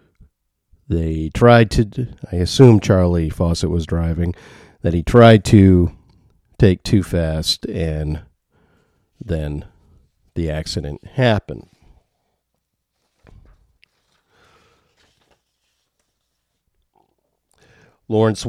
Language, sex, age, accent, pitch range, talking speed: English, male, 50-69, American, 85-115 Hz, 70 wpm